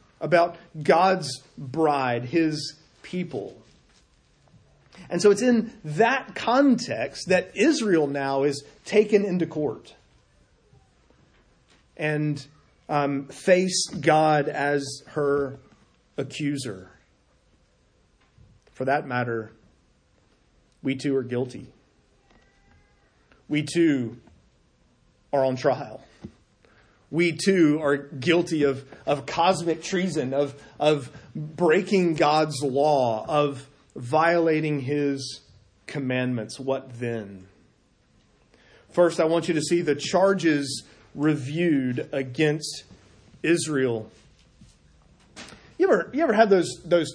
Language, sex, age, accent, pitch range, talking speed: English, male, 30-49, American, 135-170 Hz, 95 wpm